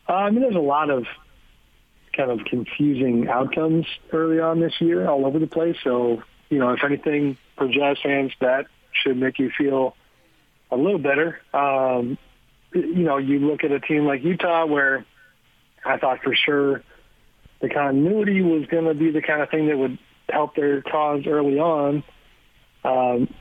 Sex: male